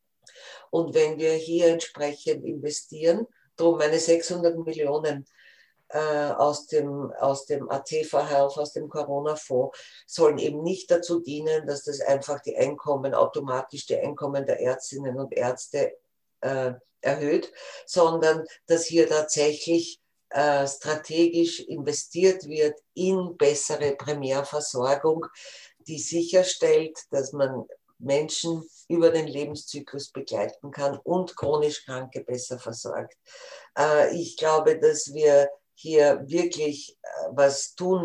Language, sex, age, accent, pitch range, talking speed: English, female, 50-69, Austrian, 140-165 Hz, 115 wpm